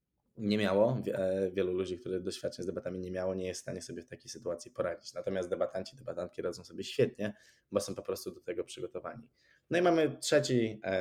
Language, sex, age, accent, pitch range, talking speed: Polish, male, 20-39, native, 90-100 Hz, 195 wpm